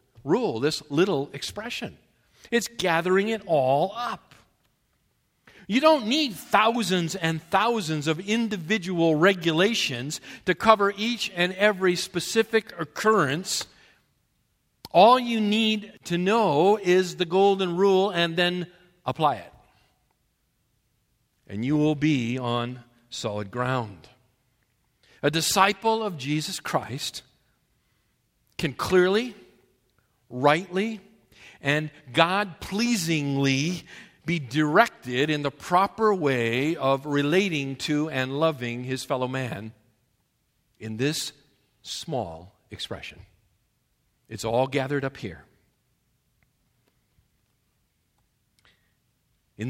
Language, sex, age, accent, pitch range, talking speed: English, male, 50-69, American, 125-190 Hz, 95 wpm